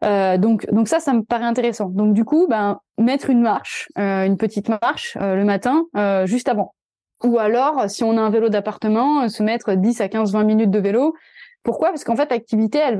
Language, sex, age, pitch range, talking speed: French, female, 20-39, 200-245 Hz, 225 wpm